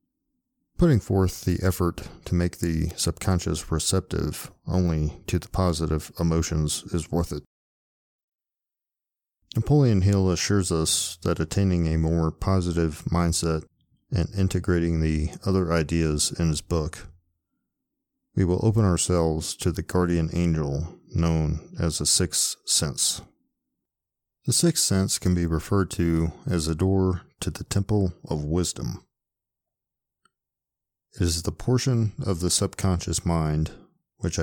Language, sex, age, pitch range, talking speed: English, male, 40-59, 80-95 Hz, 125 wpm